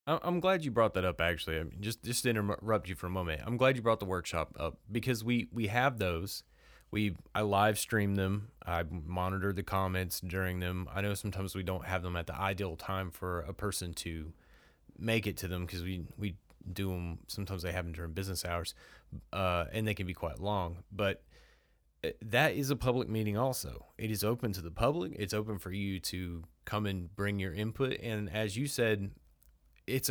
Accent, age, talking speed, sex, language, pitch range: American, 30-49, 210 wpm, male, English, 90-115 Hz